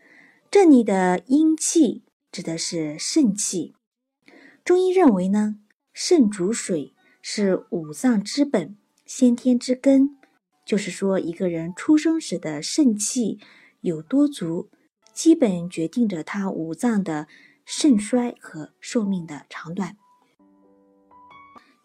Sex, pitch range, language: female, 180-275 Hz, Chinese